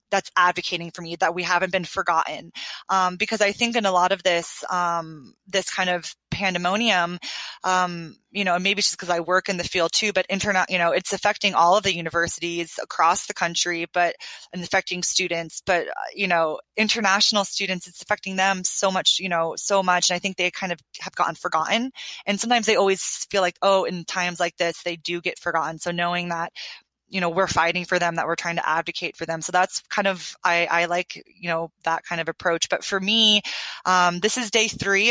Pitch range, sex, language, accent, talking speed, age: 175-205 Hz, female, English, American, 220 wpm, 20-39